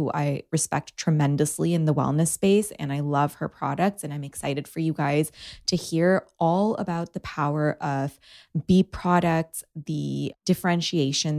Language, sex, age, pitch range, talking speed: English, female, 20-39, 150-190 Hz, 155 wpm